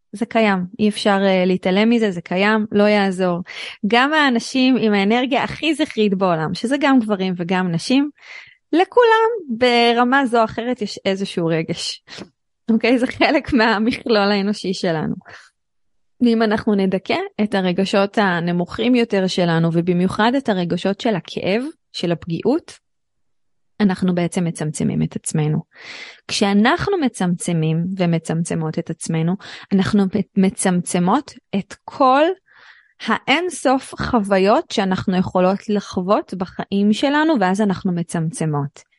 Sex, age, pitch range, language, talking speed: female, 20-39, 190-260 Hz, Hebrew, 115 wpm